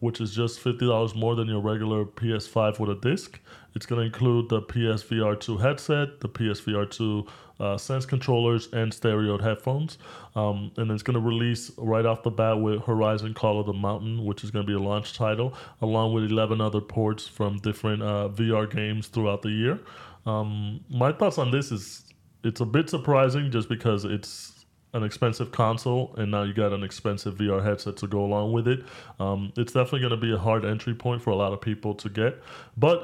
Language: English